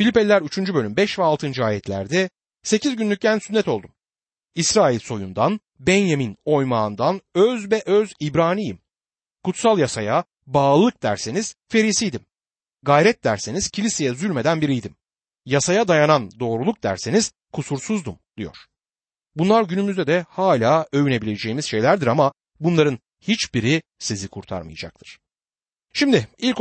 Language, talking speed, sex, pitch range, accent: Turkish, 110 wpm, male, 125-205 Hz, native